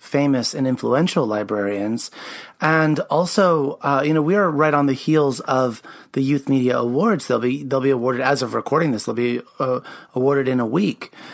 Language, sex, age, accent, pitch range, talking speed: English, male, 30-49, American, 125-150 Hz, 190 wpm